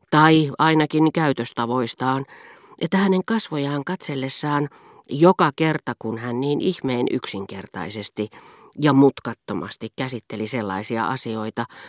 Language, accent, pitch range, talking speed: Finnish, native, 115-150 Hz, 95 wpm